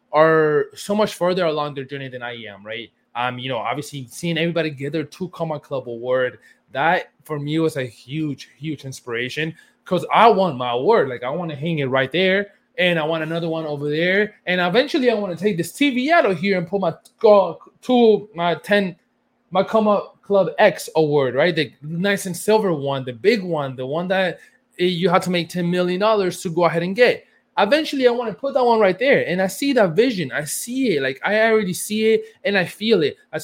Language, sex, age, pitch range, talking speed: English, male, 20-39, 155-220 Hz, 225 wpm